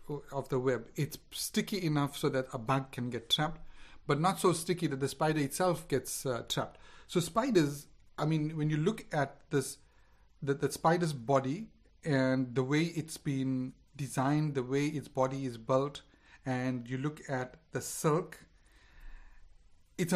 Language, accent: English, Indian